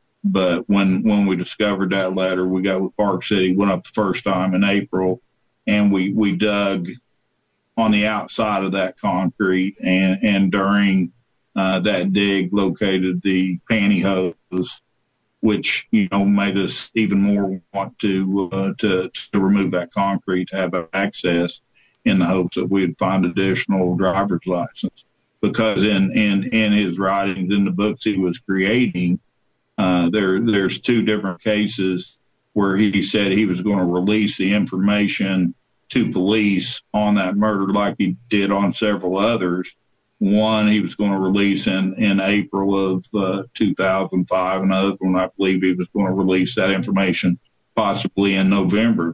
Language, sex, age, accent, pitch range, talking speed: English, male, 50-69, American, 95-100 Hz, 160 wpm